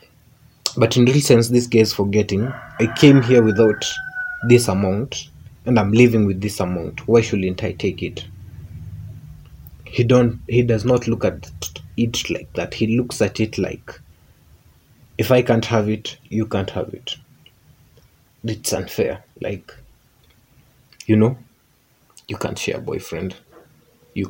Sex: male